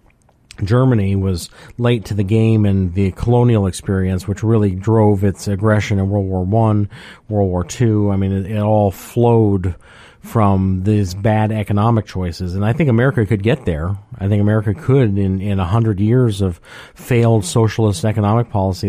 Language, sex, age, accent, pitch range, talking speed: English, male, 40-59, American, 95-115 Hz, 170 wpm